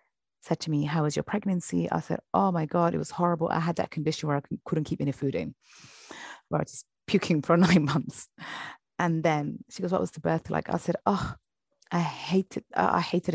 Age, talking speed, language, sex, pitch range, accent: 30-49, 230 wpm, English, female, 145-185 Hz, British